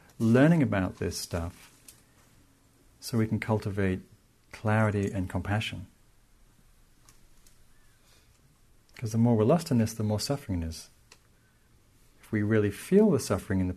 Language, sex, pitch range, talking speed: English, male, 75-110 Hz, 130 wpm